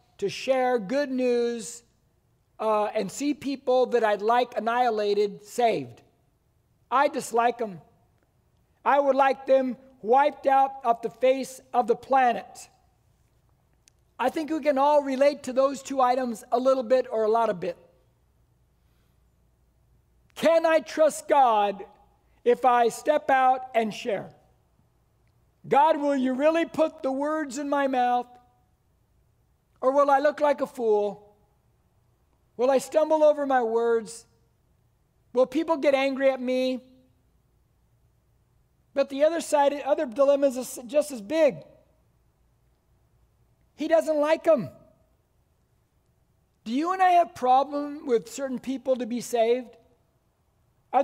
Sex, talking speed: male, 130 wpm